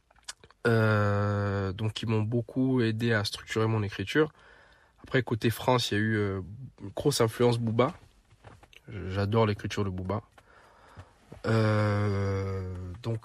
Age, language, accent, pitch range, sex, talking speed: 20-39, French, French, 105-120 Hz, male, 120 wpm